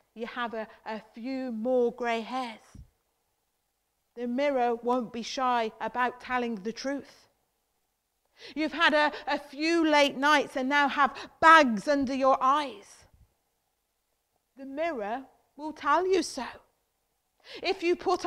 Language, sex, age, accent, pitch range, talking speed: English, female, 40-59, British, 240-310 Hz, 130 wpm